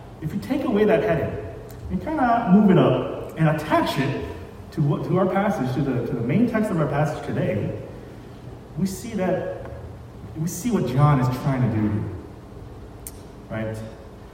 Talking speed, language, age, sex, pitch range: 175 wpm, English, 30-49, male, 110-180 Hz